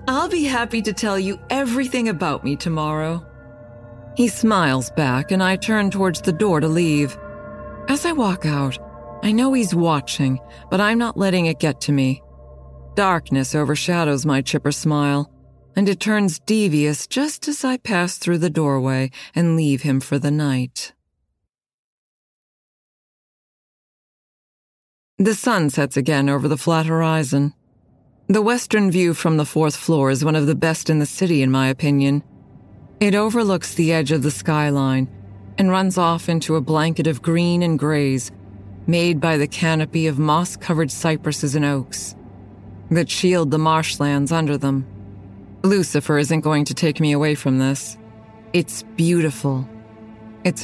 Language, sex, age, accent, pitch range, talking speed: English, female, 40-59, American, 135-175 Hz, 155 wpm